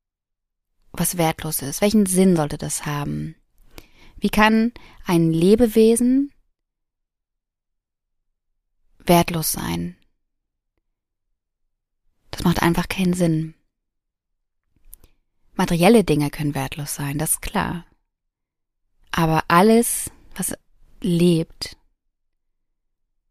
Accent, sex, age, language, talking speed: German, female, 20-39, German, 80 wpm